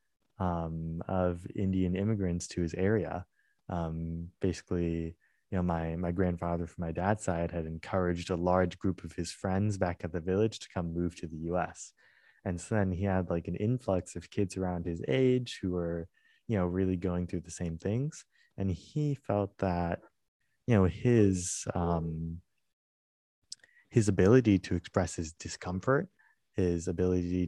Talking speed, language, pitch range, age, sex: 165 wpm, English, 85-105 Hz, 20-39, male